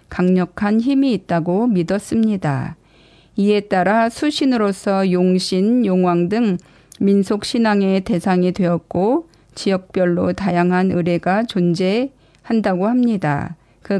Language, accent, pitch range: Korean, native, 175-210 Hz